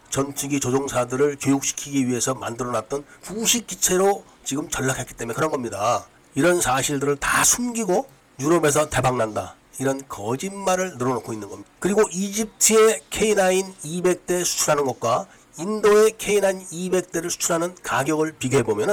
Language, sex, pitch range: Korean, male, 130-180 Hz